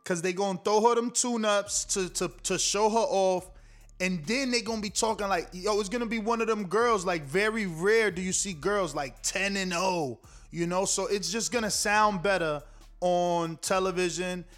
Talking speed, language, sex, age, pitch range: 205 wpm, English, male, 20-39, 160-200 Hz